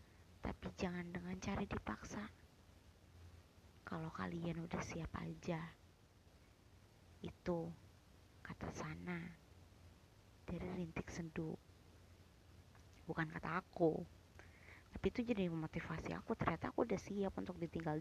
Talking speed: 100 wpm